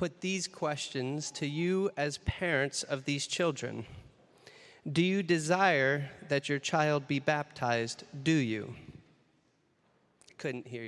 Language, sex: English, male